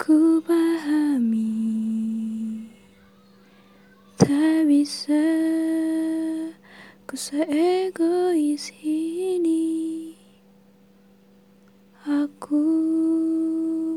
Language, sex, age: Indonesian, female, 20-39